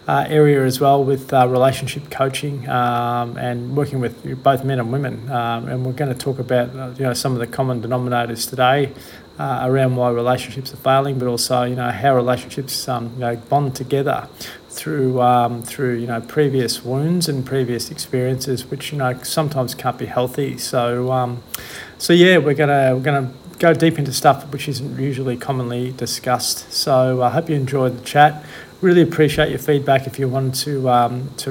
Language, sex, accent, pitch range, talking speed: English, male, Australian, 125-140 Hz, 190 wpm